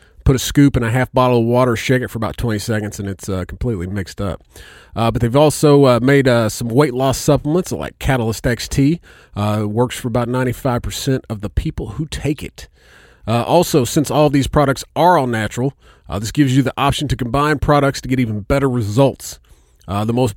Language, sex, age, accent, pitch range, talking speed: English, male, 40-59, American, 110-145 Hz, 215 wpm